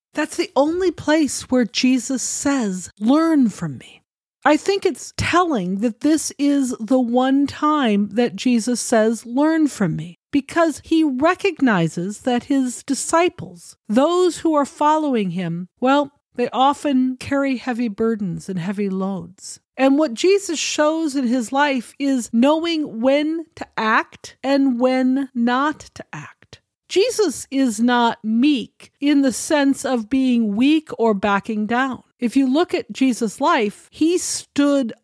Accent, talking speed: American, 145 wpm